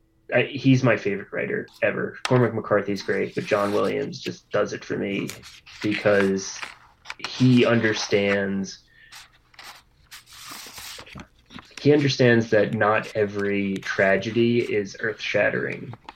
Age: 20-39